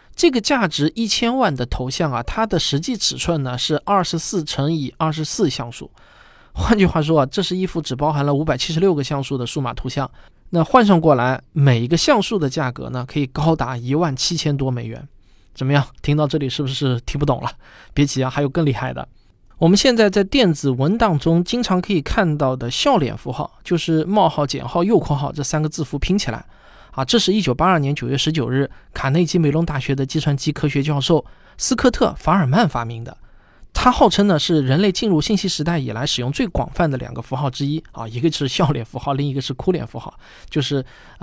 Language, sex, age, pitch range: Chinese, male, 20-39, 135-175 Hz